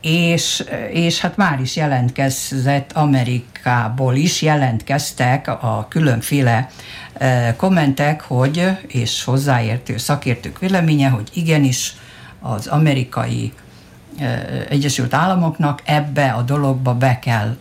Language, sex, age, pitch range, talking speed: Hungarian, female, 60-79, 125-150 Hz, 95 wpm